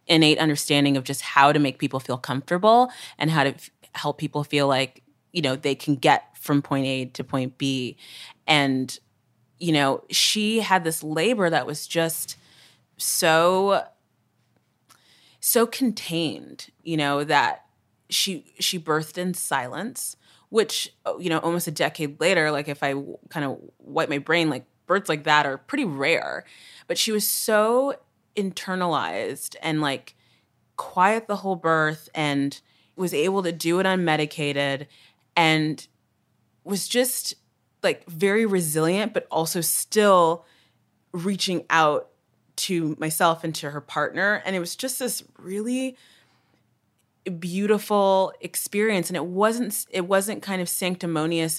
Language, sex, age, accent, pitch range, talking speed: English, female, 30-49, American, 145-185 Hz, 140 wpm